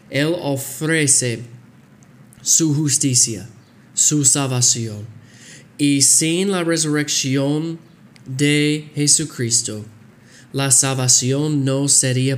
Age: 20-39